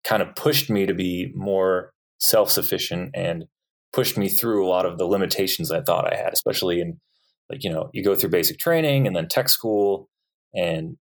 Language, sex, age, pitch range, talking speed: English, male, 20-39, 90-135 Hz, 195 wpm